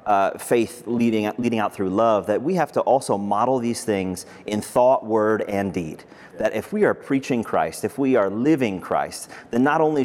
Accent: American